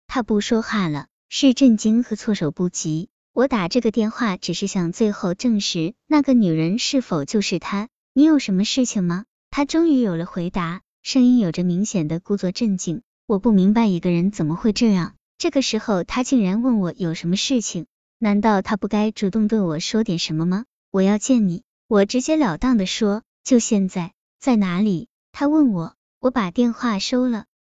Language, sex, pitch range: Chinese, male, 185-245 Hz